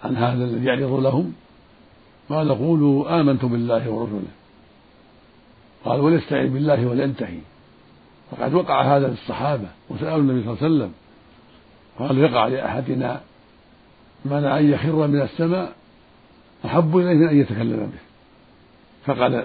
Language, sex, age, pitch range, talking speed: Arabic, male, 60-79, 115-145 Hz, 115 wpm